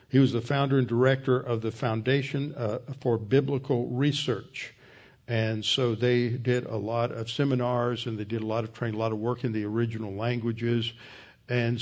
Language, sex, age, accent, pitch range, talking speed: English, male, 60-79, American, 115-135 Hz, 190 wpm